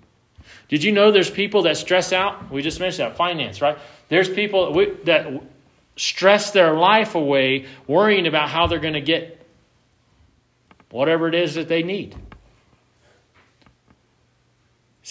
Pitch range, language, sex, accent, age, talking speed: 120-175 Hz, English, male, American, 40-59, 140 wpm